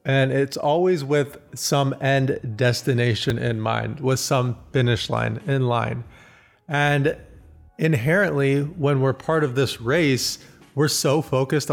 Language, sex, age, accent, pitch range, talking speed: English, male, 30-49, American, 115-140 Hz, 135 wpm